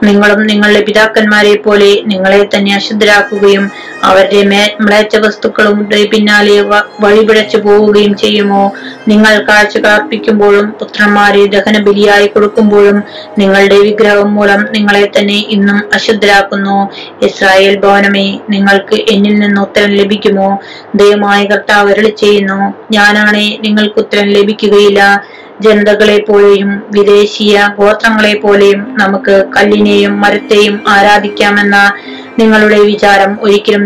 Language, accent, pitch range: Malayalam, native, 200-210 Hz